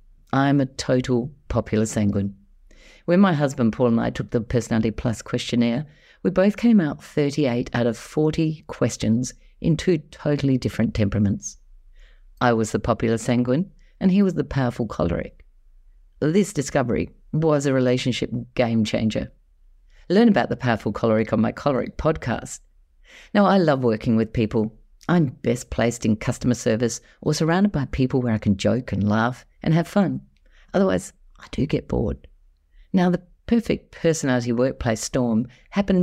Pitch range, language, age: 115-155 Hz, English, 40-59